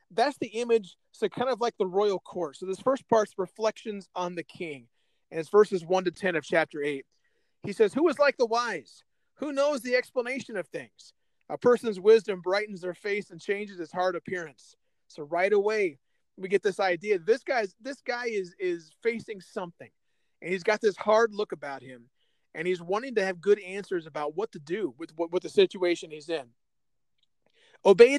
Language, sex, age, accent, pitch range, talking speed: English, male, 30-49, American, 180-240 Hz, 195 wpm